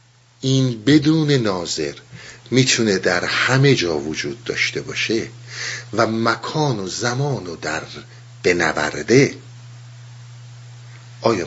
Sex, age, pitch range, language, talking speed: male, 50-69, 120-140 Hz, Persian, 90 wpm